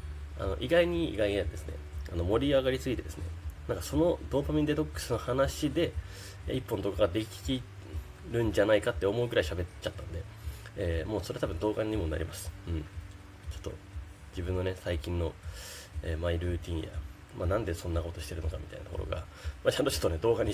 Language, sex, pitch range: Japanese, male, 80-95 Hz